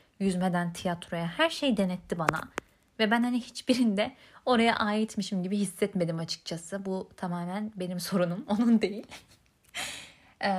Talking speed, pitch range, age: 125 wpm, 185-255 Hz, 30-49